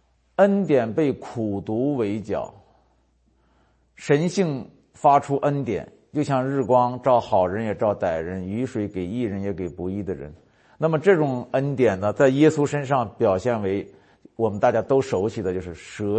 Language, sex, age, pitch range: Chinese, male, 50-69, 100-145 Hz